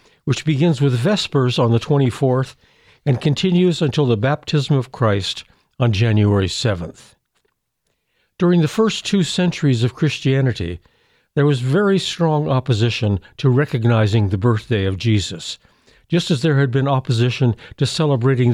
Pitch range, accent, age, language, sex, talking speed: 115-150 Hz, American, 60-79, English, male, 140 wpm